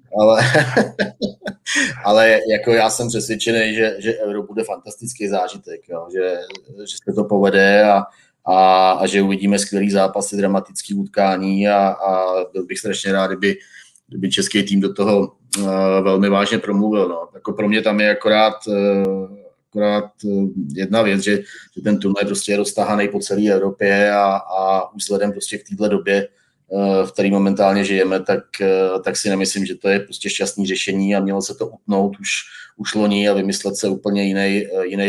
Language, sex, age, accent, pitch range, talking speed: Czech, male, 20-39, native, 95-105 Hz, 160 wpm